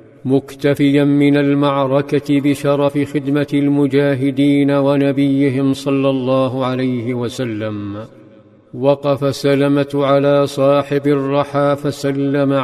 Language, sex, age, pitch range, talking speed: Arabic, male, 50-69, 135-145 Hz, 80 wpm